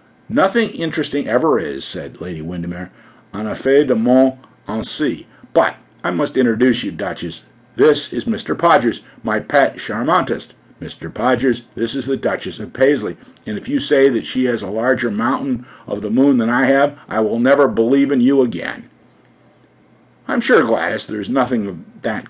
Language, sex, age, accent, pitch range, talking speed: English, male, 50-69, American, 115-145 Hz, 170 wpm